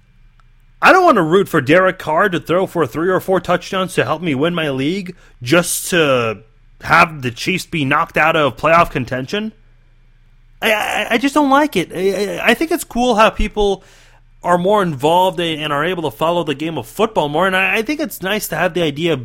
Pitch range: 130-195 Hz